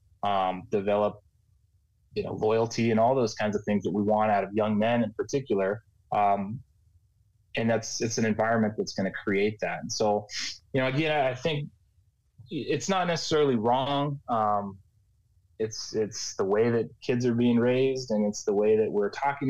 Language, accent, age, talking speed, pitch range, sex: English, American, 20-39, 185 wpm, 100-120 Hz, male